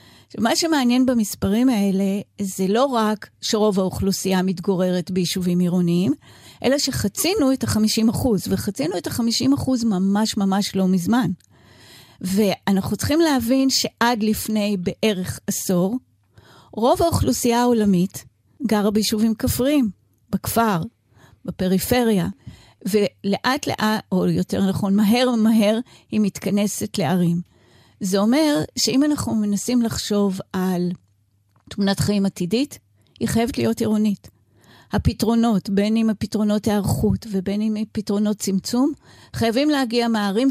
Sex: female